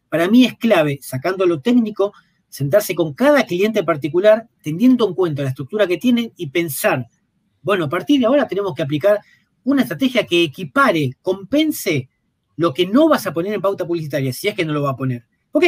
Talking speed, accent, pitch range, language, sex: 200 wpm, Argentinian, 155-210 Hz, Spanish, male